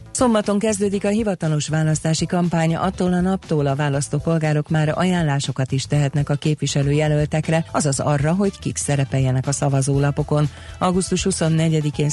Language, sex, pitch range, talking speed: Hungarian, female, 140-160 Hz, 130 wpm